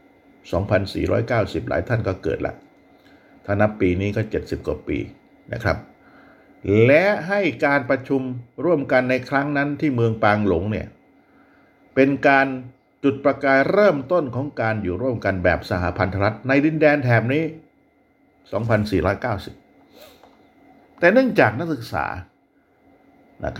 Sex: male